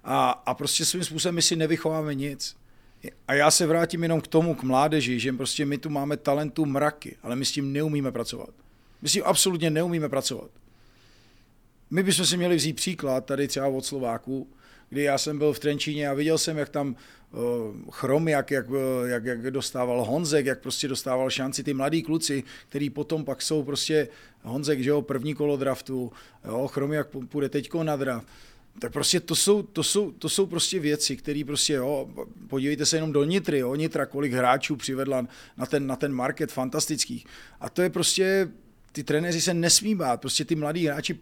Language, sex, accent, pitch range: Czech, male, native, 130-160 Hz